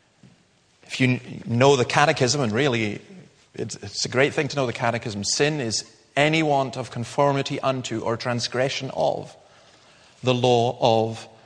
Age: 40-59